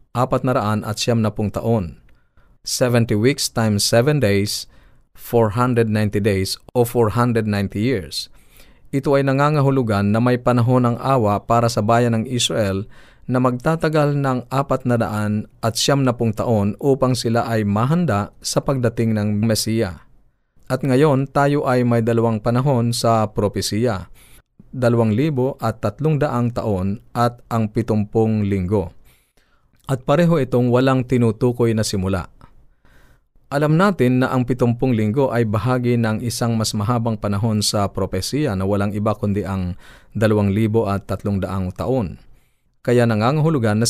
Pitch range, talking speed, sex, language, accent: 105-130 Hz, 140 wpm, male, Filipino, native